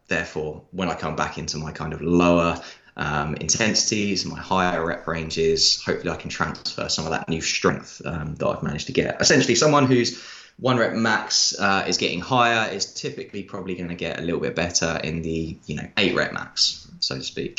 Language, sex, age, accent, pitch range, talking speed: English, male, 20-39, British, 85-110 Hz, 210 wpm